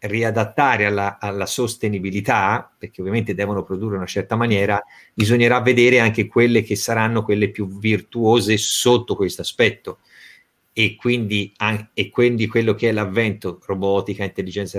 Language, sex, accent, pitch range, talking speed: Italian, male, native, 105-120 Hz, 135 wpm